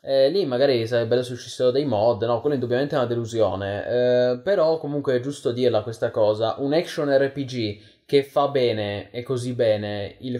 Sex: male